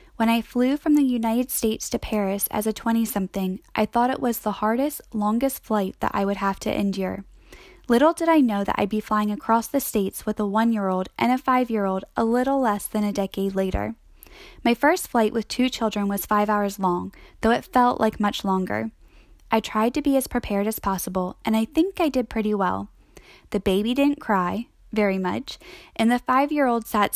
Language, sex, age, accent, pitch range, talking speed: English, female, 10-29, American, 200-245 Hz, 200 wpm